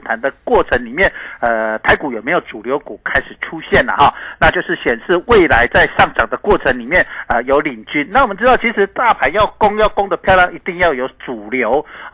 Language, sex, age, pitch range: Chinese, male, 50-69, 130-205 Hz